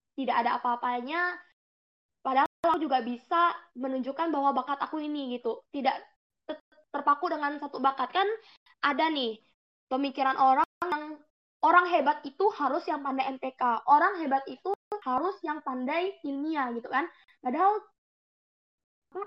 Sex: female